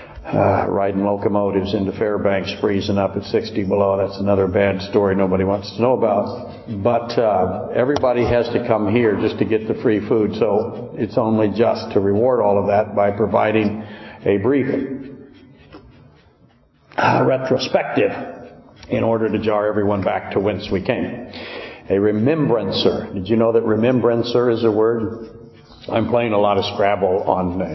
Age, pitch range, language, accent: 60-79, 100-120 Hz, English, American